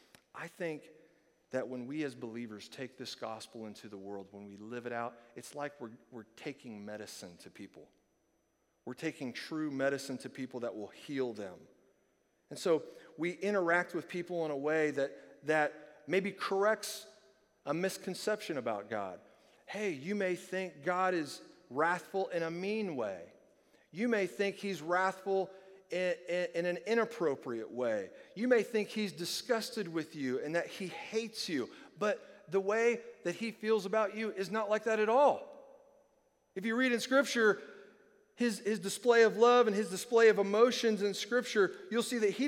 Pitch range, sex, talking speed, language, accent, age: 155-220 Hz, male, 170 wpm, English, American, 40-59